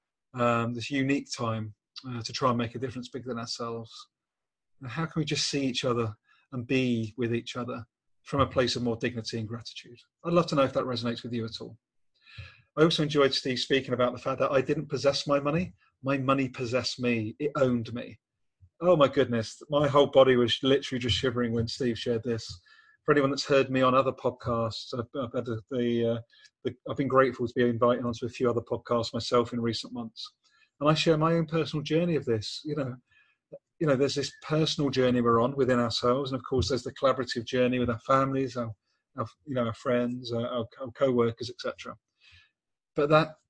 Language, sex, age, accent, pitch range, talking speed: English, male, 30-49, British, 120-140 Hz, 210 wpm